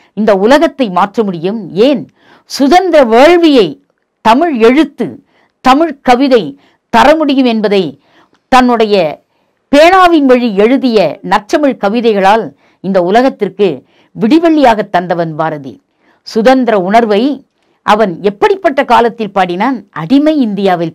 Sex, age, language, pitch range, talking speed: female, 60-79, Tamil, 195-275 Hz, 95 wpm